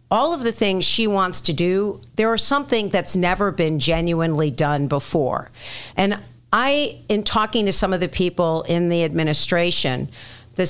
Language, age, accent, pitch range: English, 50-69, American, 155-195 Hz